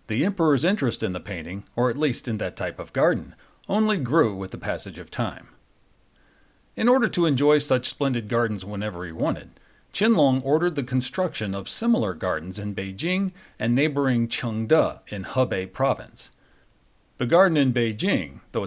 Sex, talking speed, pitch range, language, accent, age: male, 165 wpm, 105-150 Hz, English, American, 40-59